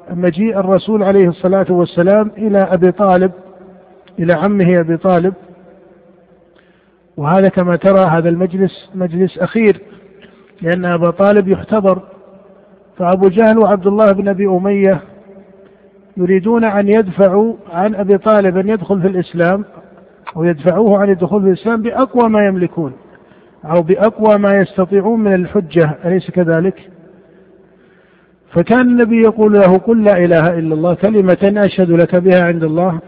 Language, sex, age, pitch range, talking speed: Arabic, male, 50-69, 180-205 Hz, 130 wpm